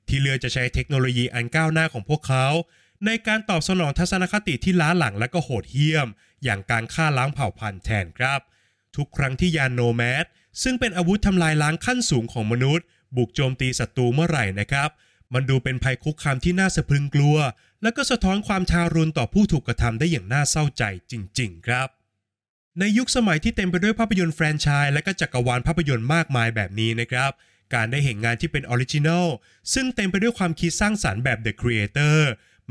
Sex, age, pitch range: male, 20-39, 120-170 Hz